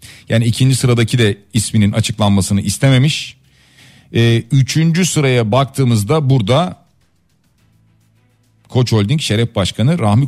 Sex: male